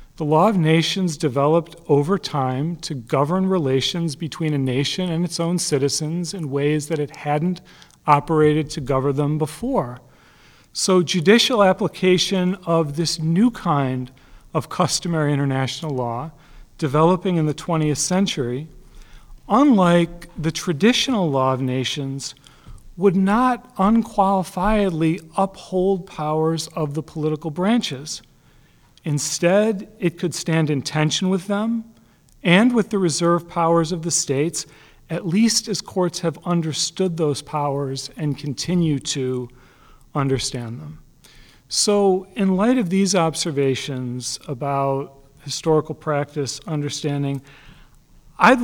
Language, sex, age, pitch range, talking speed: English, male, 40-59, 140-180 Hz, 120 wpm